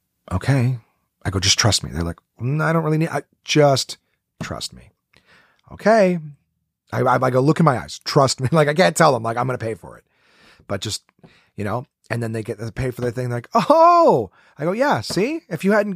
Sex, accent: male, American